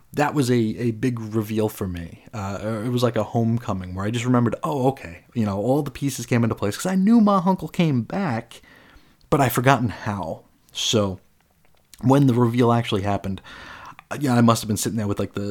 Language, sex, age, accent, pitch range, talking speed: English, male, 30-49, American, 100-125 Hz, 215 wpm